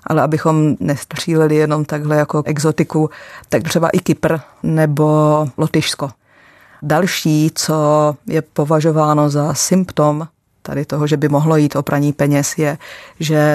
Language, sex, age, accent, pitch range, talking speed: Czech, female, 30-49, native, 145-160 Hz, 135 wpm